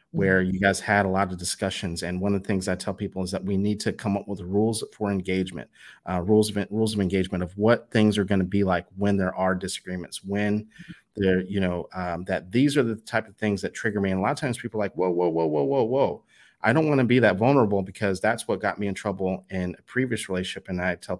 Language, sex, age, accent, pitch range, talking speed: English, male, 30-49, American, 95-105 Hz, 265 wpm